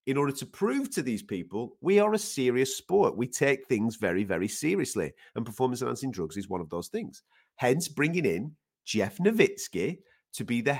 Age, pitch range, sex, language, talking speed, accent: 40-59, 100-165 Hz, male, English, 195 wpm, British